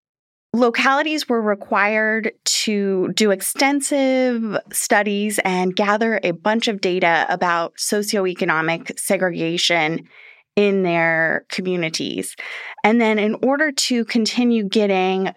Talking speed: 100 wpm